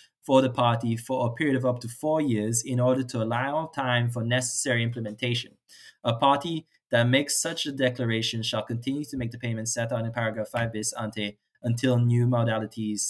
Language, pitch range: English, 115-130 Hz